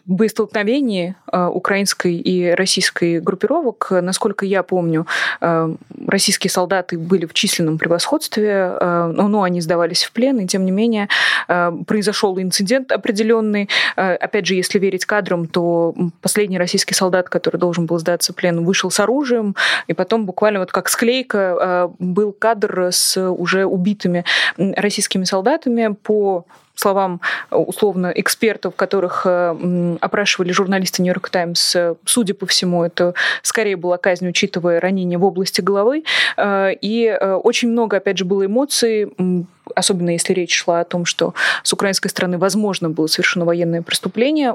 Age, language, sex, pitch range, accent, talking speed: 20-39, Russian, female, 180-210 Hz, native, 135 wpm